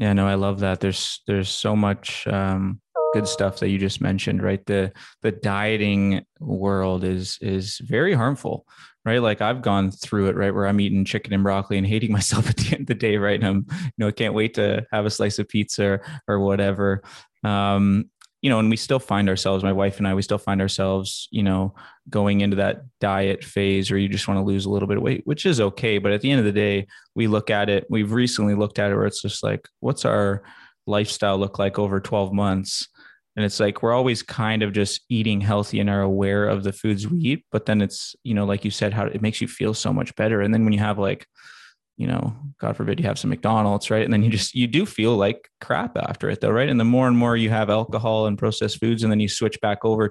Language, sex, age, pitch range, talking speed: English, male, 20-39, 100-110 Hz, 250 wpm